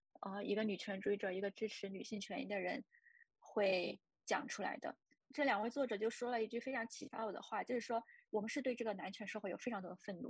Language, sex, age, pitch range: Chinese, female, 20-39, 200-260 Hz